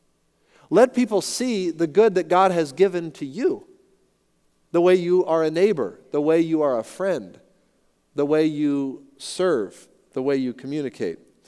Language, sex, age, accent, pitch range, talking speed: English, male, 40-59, American, 125-170 Hz, 160 wpm